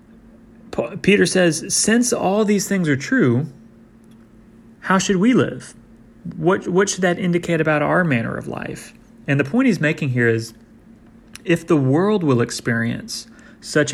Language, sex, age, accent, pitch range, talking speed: English, male, 30-49, American, 120-160 Hz, 150 wpm